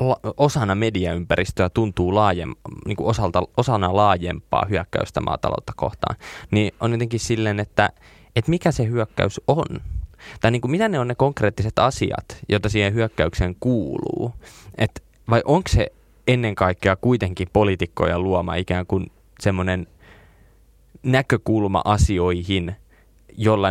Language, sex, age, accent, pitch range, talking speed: Finnish, male, 20-39, native, 90-110 Hz, 110 wpm